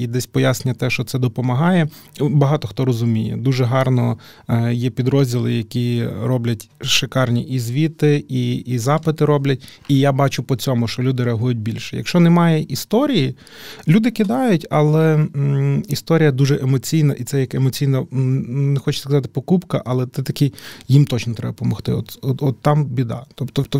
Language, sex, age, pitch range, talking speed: Ukrainian, male, 20-39, 120-145 Hz, 160 wpm